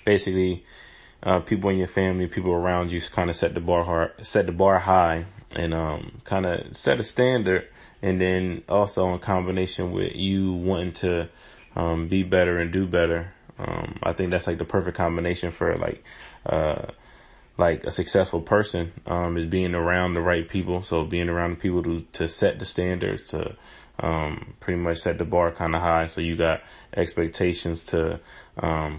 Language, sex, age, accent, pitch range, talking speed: English, male, 20-39, American, 85-95 Hz, 185 wpm